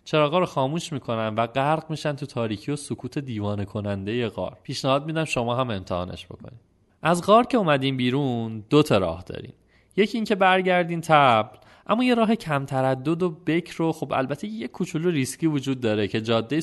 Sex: male